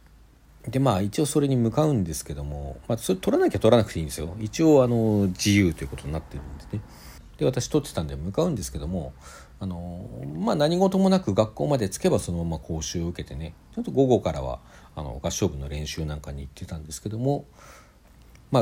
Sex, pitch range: male, 75-115 Hz